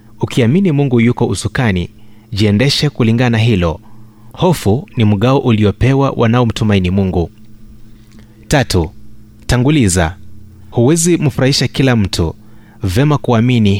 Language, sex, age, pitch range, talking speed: Swahili, male, 30-49, 105-130 Hz, 90 wpm